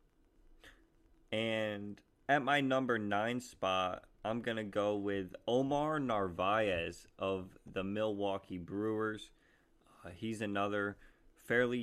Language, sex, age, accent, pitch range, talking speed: English, male, 20-39, American, 100-115 Hz, 105 wpm